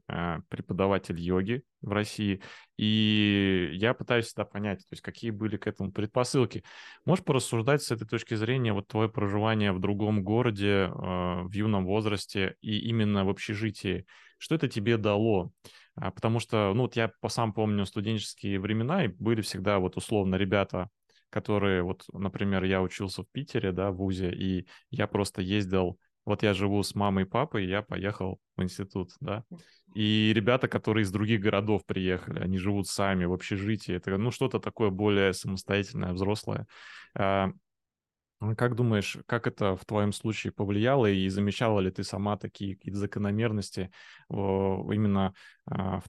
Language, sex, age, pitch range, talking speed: Russian, male, 20-39, 95-110 Hz, 155 wpm